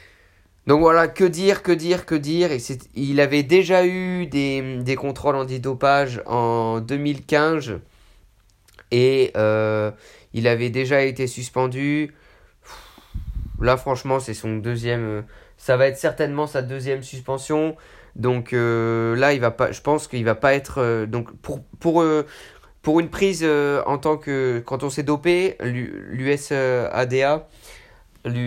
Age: 20-39